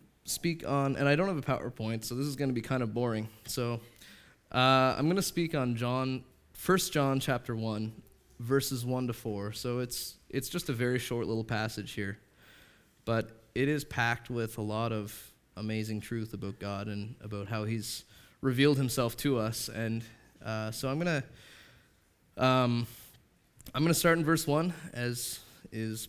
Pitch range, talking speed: 110-135 Hz, 180 wpm